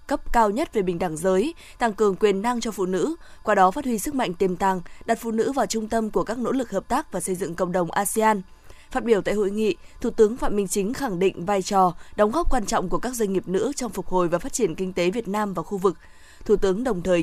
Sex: female